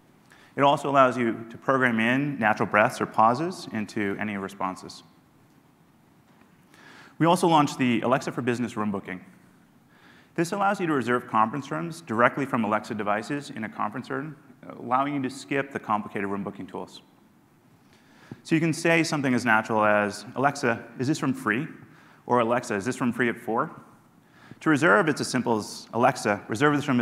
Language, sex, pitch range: English, male, 105-140 Hz